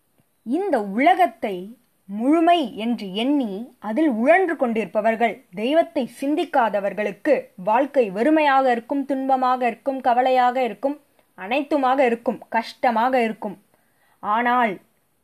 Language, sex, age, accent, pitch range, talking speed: Tamil, female, 20-39, native, 200-275 Hz, 85 wpm